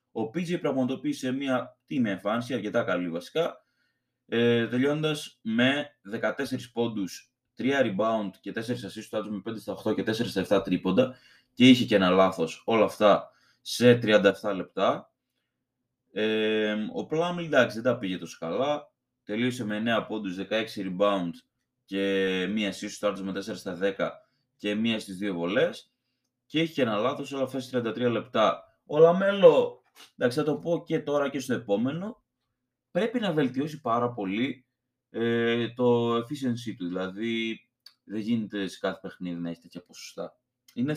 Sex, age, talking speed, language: male, 20-39, 155 wpm, Greek